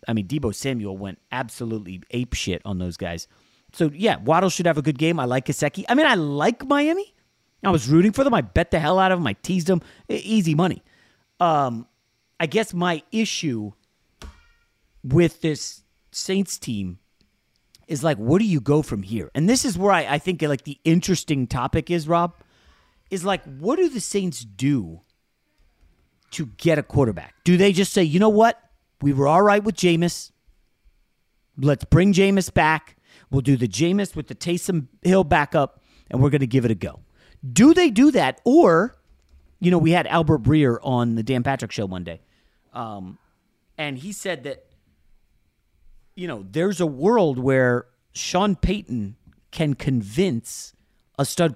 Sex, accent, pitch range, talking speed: male, American, 110-180 Hz, 180 wpm